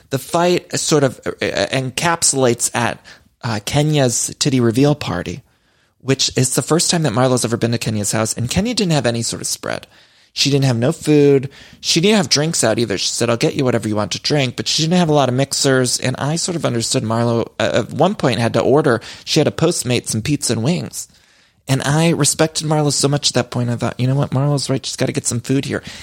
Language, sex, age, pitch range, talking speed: English, male, 30-49, 120-155 Hz, 240 wpm